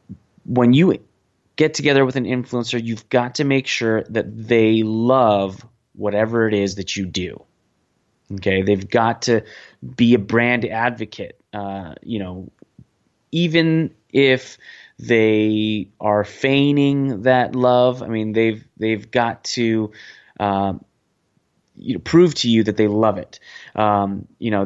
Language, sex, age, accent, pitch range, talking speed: English, male, 20-39, American, 105-125 Hz, 135 wpm